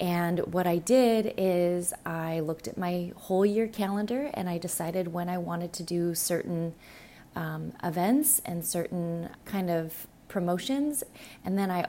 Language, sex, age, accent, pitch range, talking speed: English, female, 20-39, American, 170-210 Hz, 155 wpm